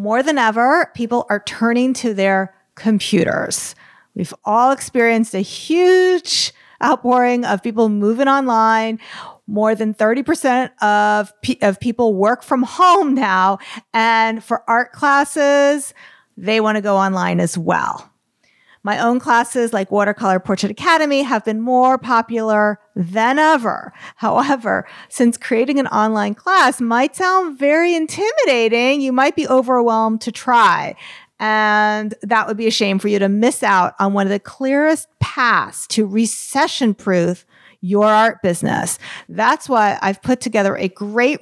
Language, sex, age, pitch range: English, female, 40-59, 210-260 Hz